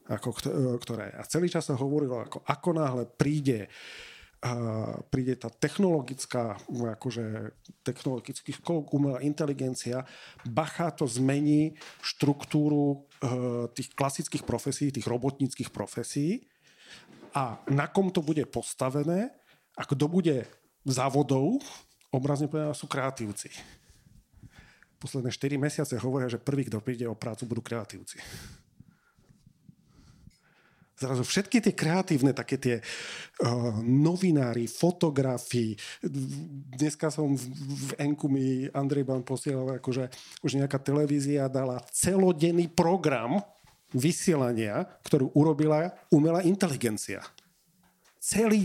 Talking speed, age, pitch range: 105 wpm, 40-59, 125-160 Hz